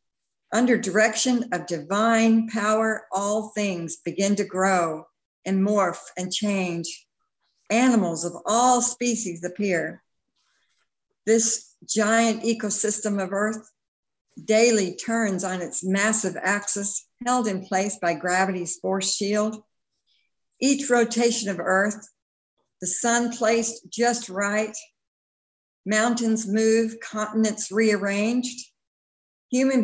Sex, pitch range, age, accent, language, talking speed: female, 190-230 Hz, 60-79, American, English, 105 wpm